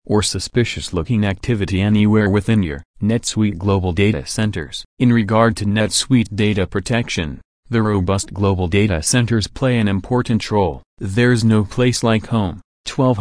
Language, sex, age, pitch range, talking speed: English, male, 40-59, 95-115 Hz, 140 wpm